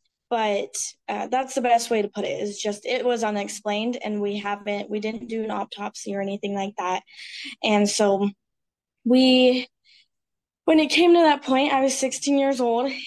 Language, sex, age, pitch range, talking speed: English, female, 10-29, 210-250 Hz, 185 wpm